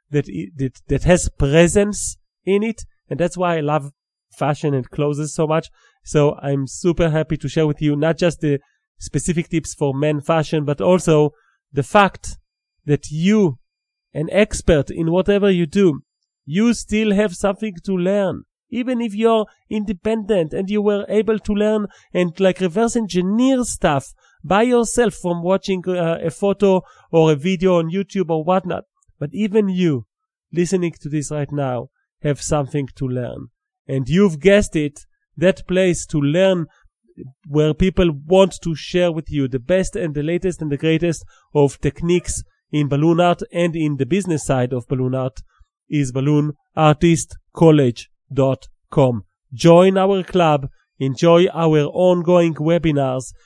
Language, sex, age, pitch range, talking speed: English, male, 40-59, 145-190 Hz, 155 wpm